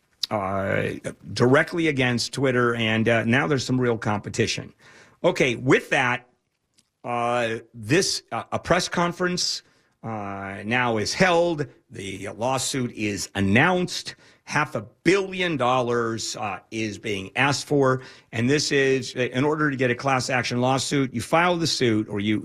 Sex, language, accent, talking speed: male, English, American, 145 wpm